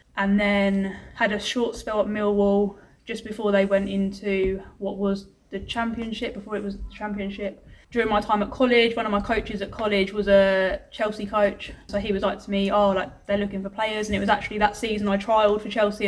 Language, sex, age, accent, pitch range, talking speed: English, female, 10-29, British, 190-215 Hz, 220 wpm